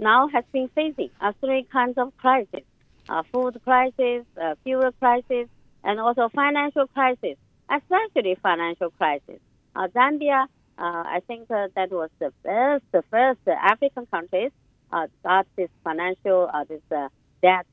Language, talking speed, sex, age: English, 150 wpm, female, 50-69